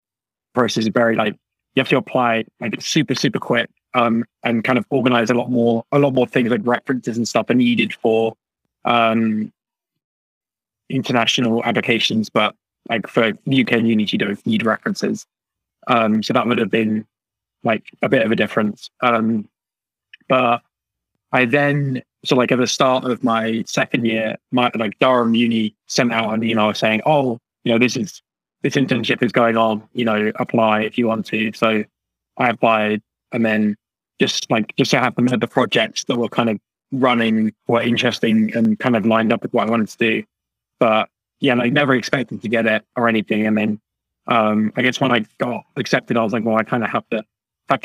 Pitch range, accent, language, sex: 110-125 Hz, British, English, male